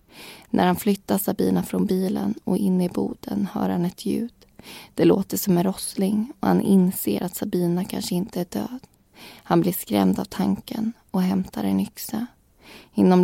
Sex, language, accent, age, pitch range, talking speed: female, Swedish, native, 20-39, 175-205 Hz, 170 wpm